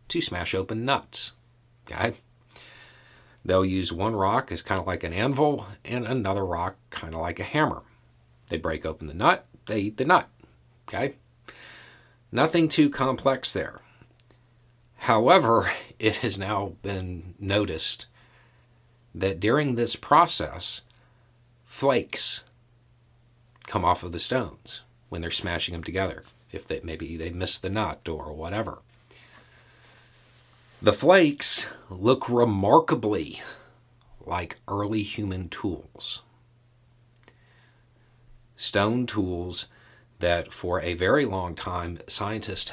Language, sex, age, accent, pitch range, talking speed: English, male, 50-69, American, 95-120 Hz, 115 wpm